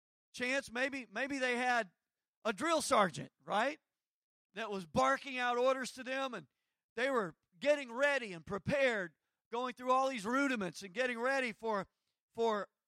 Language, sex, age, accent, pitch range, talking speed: English, male, 40-59, American, 205-255 Hz, 155 wpm